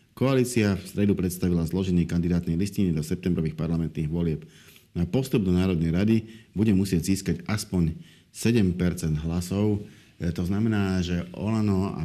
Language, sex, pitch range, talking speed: Slovak, male, 85-100 Hz, 135 wpm